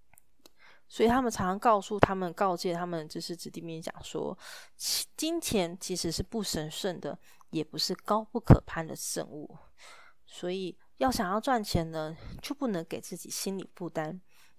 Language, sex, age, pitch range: Chinese, female, 30-49, 170-245 Hz